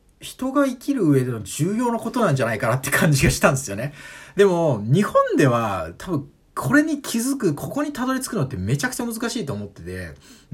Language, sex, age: Japanese, male, 40-59